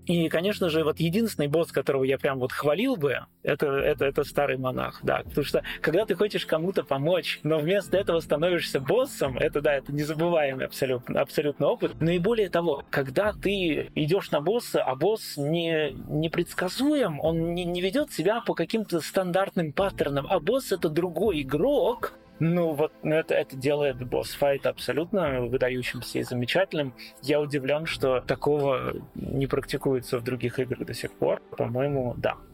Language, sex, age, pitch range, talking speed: Russian, male, 20-39, 140-195 Hz, 165 wpm